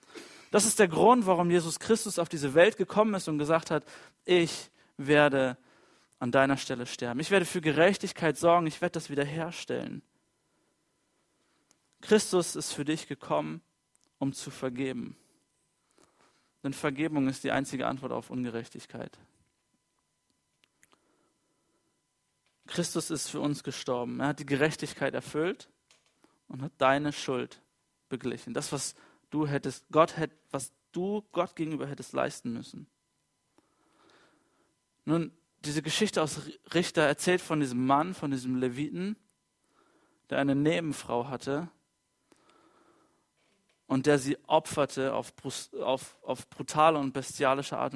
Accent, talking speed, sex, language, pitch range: German, 125 wpm, male, German, 135-165 Hz